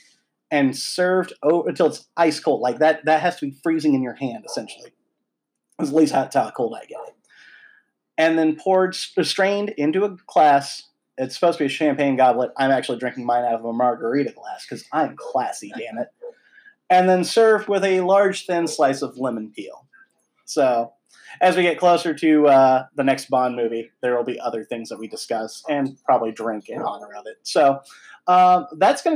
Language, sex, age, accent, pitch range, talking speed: English, male, 30-49, American, 135-180 Hz, 195 wpm